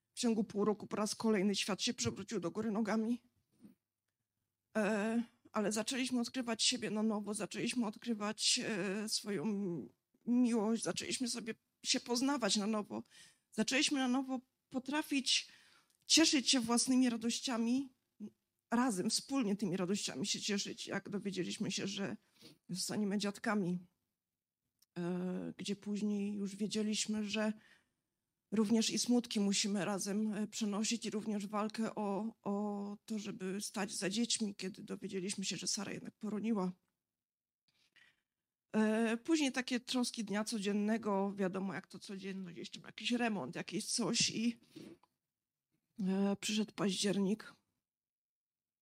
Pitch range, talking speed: 200-230 Hz, 115 wpm